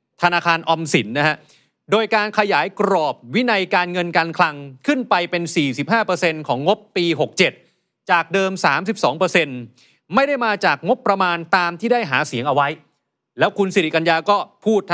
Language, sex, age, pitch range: Thai, male, 30-49, 150-190 Hz